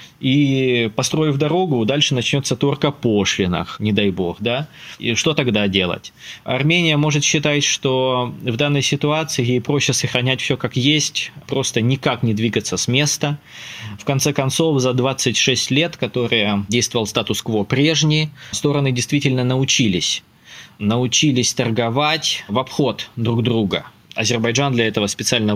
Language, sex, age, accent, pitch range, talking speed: Russian, male, 20-39, native, 115-140 Hz, 135 wpm